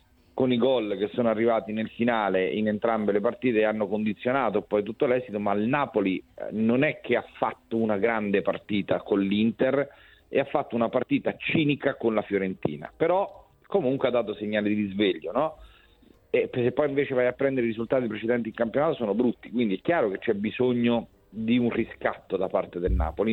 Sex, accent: male, native